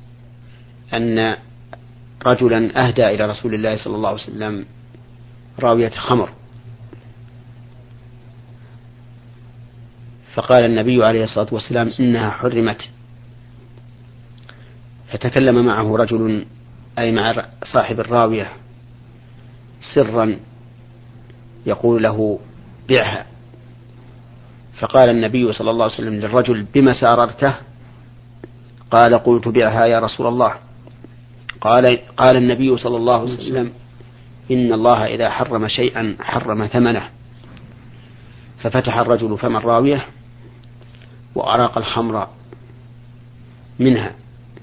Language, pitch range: Arabic, 115-120 Hz